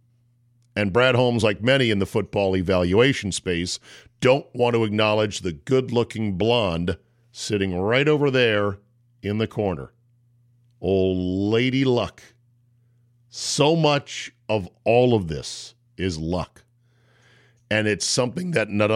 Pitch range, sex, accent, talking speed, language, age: 105-125 Hz, male, American, 125 wpm, English, 50-69